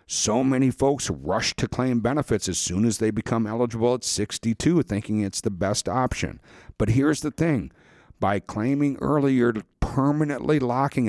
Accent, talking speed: American, 160 wpm